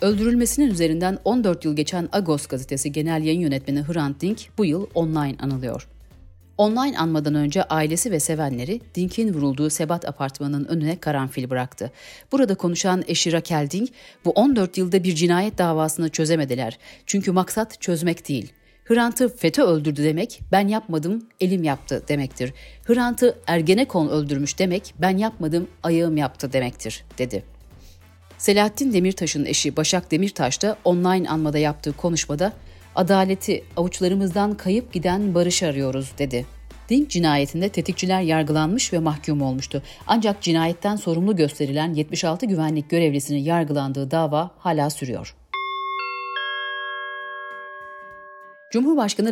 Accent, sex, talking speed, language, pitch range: native, female, 120 wpm, Turkish, 145-200 Hz